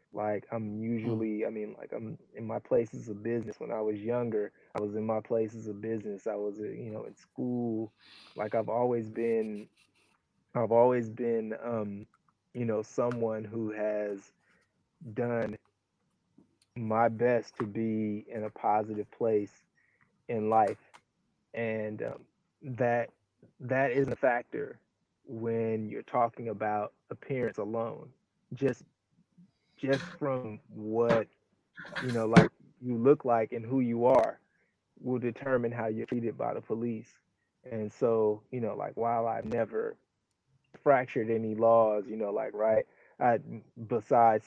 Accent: American